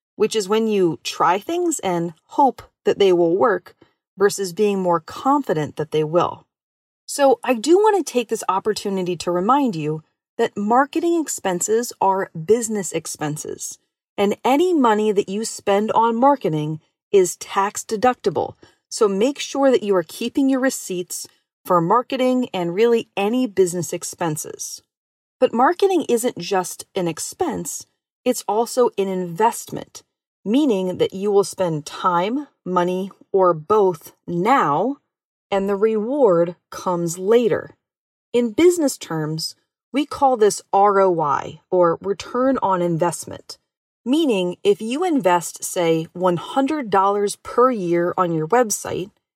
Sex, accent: female, American